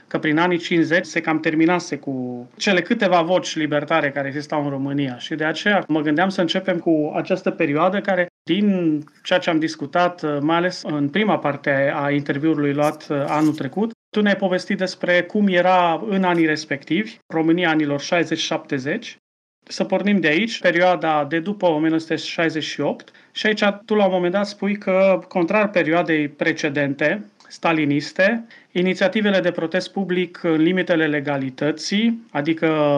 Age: 30-49